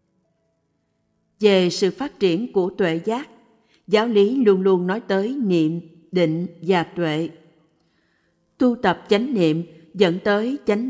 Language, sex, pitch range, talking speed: Vietnamese, female, 175-220 Hz, 130 wpm